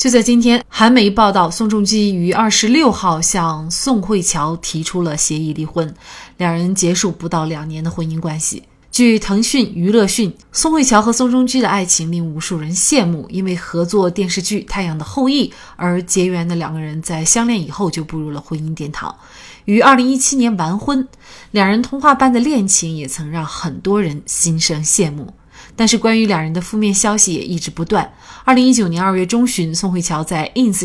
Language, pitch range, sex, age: Chinese, 165-225 Hz, female, 20-39